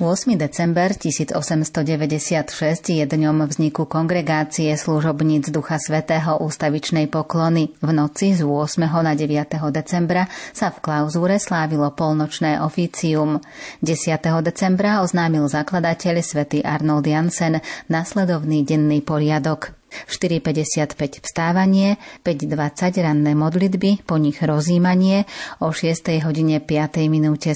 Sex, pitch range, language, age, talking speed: female, 150-175 Hz, Slovak, 30-49, 100 wpm